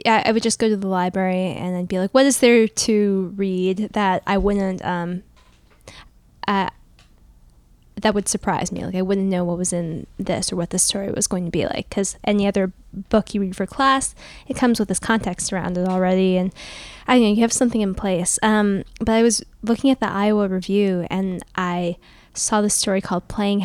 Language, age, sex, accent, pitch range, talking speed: English, 10-29, female, American, 185-220 Hz, 210 wpm